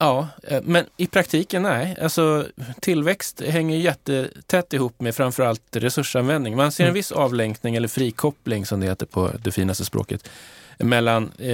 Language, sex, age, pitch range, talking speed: Swedish, male, 20-39, 105-135 Hz, 145 wpm